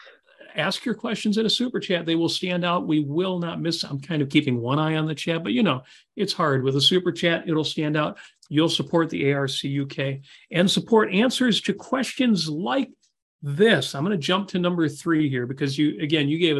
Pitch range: 145-215 Hz